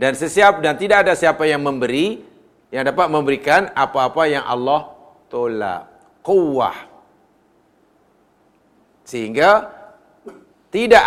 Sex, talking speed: male, 100 wpm